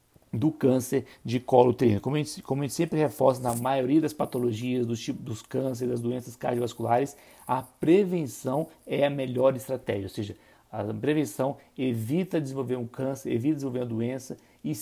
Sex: male